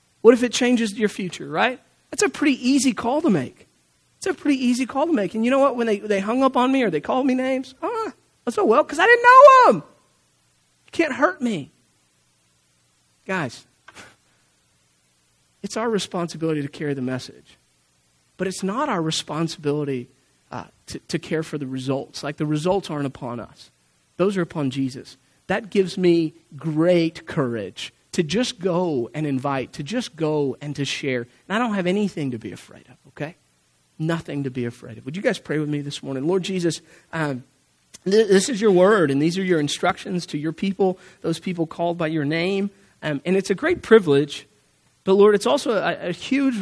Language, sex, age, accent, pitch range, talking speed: English, male, 40-59, American, 140-205 Hz, 200 wpm